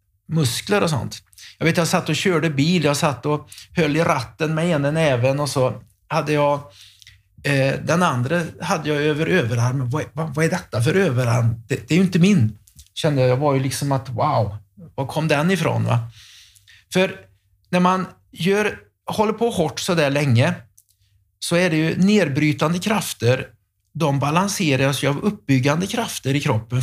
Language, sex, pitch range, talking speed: Swedish, male, 115-165 Hz, 175 wpm